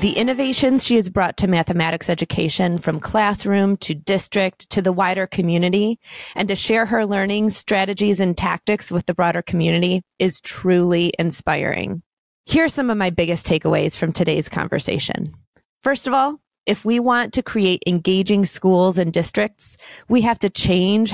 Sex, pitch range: female, 175-220 Hz